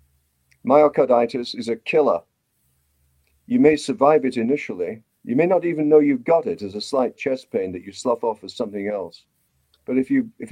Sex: male